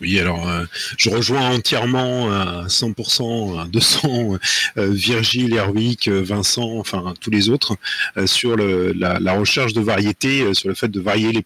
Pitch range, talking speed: 105-125 Hz, 175 wpm